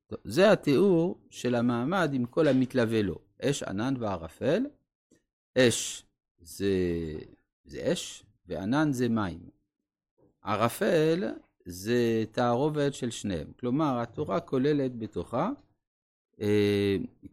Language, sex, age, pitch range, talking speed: Hebrew, male, 50-69, 105-145 Hz, 95 wpm